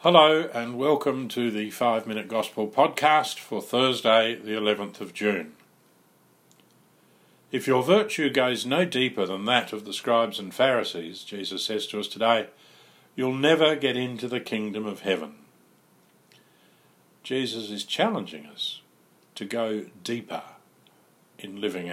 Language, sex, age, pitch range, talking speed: English, male, 50-69, 105-130 Hz, 135 wpm